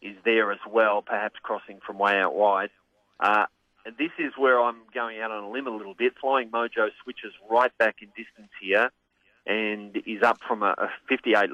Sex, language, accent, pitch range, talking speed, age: male, English, Australian, 105-145 Hz, 200 wpm, 40-59